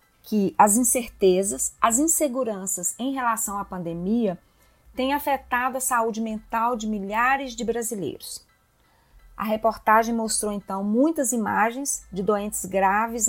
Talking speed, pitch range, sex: 120 wpm, 210-260 Hz, female